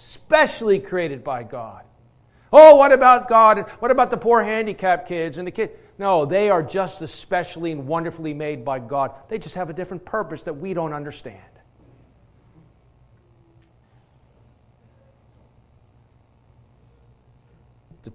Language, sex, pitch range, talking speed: English, male, 165-205 Hz, 125 wpm